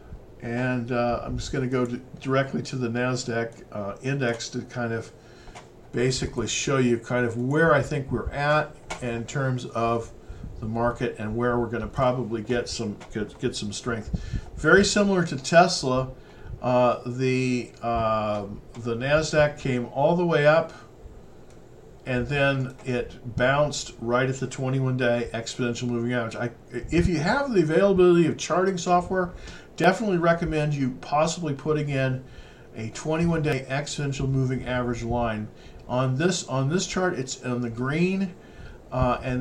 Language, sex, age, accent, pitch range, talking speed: English, male, 50-69, American, 120-145 Hz, 150 wpm